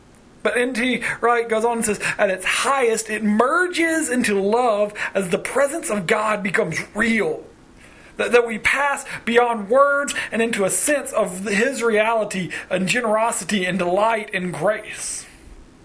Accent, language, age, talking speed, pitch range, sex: American, English, 40-59, 150 wpm, 200-250 Hz, male